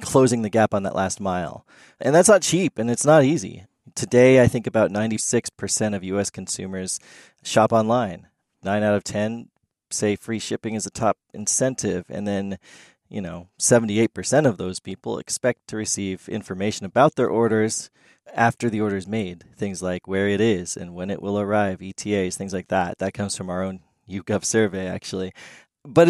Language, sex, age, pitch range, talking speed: English, male, 20-39, 100-125 Hz, 180 wpm